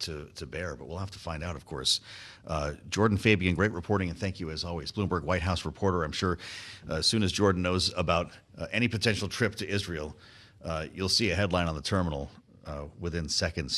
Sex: male